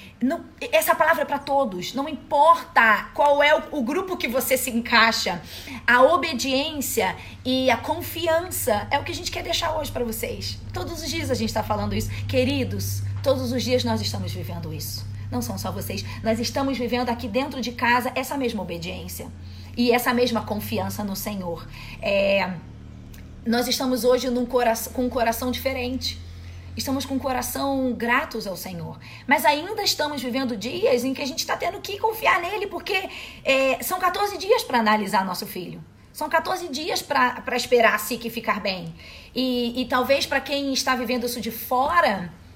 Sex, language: female, Portuguese